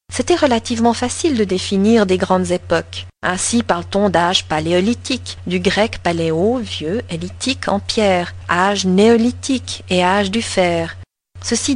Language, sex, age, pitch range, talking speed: French, female, 40-59, 175-225 Hz, 135 wpm